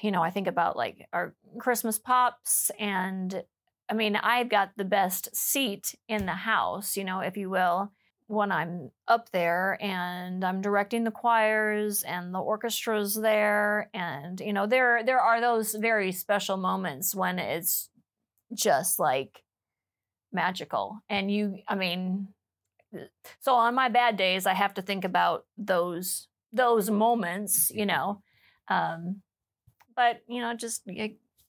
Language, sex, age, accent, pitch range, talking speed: English, female, 30-49, American, 185-215 Hz, 145 wpm